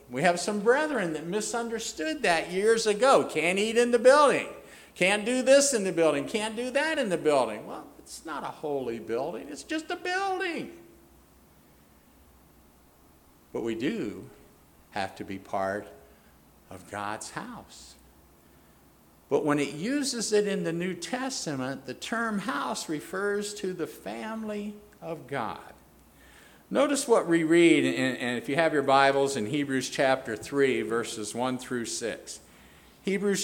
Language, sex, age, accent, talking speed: English, male, 50-69, American, 150 wpm